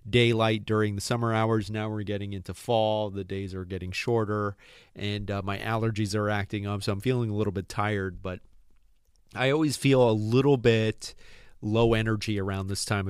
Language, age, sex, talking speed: English, 30-49, male, 190 wpm